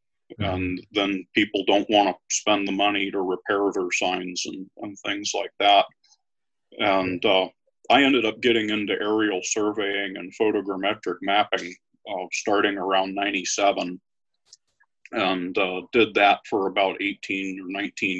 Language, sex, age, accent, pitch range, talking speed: English, male, 40-59, American, 95-105 Hz, 140 wpm